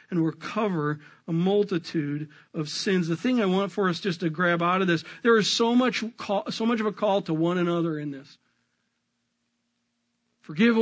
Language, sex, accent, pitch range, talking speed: English, male, American, 195-240 Hz, 190 wpm